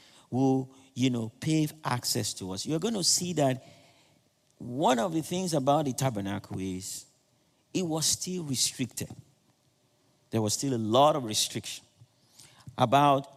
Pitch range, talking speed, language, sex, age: 115-145 Hz, 145 wpm, English, male, 50-69